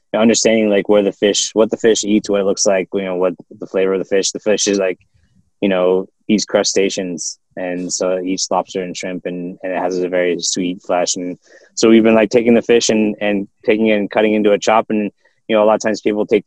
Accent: American